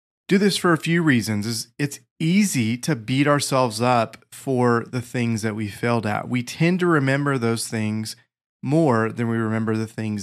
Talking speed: 190 wpm